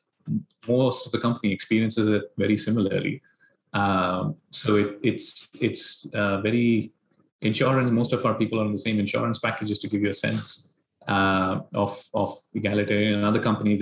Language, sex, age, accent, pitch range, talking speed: English, male, 30-49, Indian, 100-120 Hz, 165 wpm